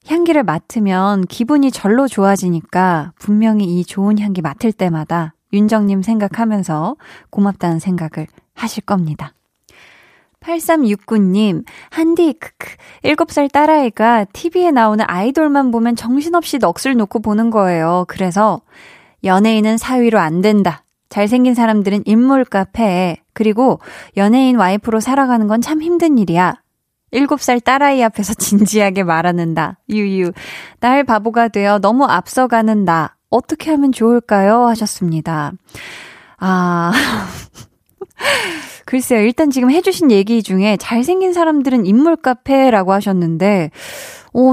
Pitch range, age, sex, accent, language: 190-255 Hz, 20-39, female, native, Korean